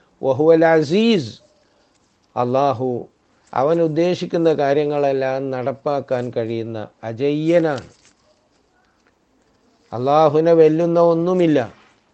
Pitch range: 130-165 Hz